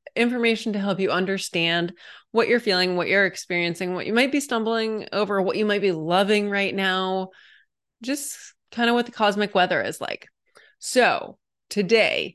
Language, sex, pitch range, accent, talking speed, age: English, female, 180-220 Hz, American, 170 wpm, 30-49